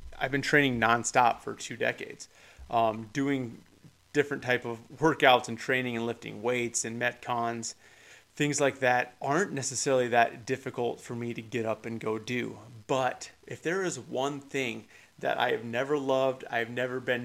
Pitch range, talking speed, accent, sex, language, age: 115-135 Hz, 175 wpm, American, male, English, 30-49